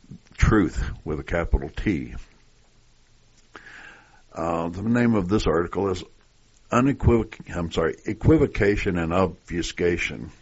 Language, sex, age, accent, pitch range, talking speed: English, male, 60-79, American, 80-105 Hz, 105 wpm